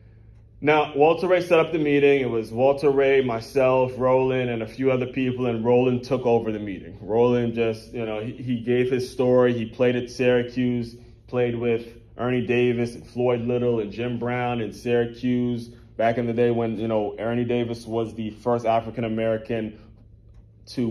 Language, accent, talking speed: English, American, 185 wpm